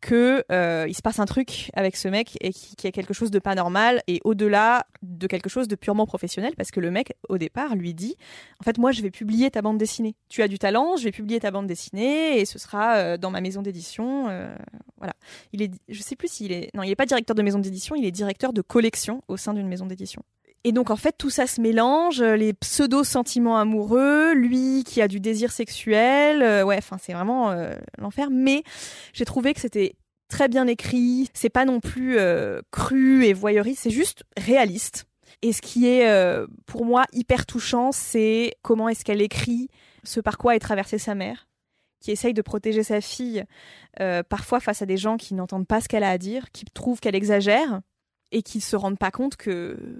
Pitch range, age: 200-250 Hz, 20-39